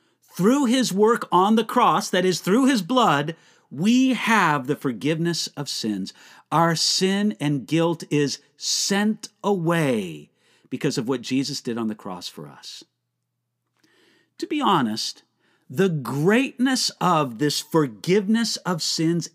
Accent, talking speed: American, 135 wpm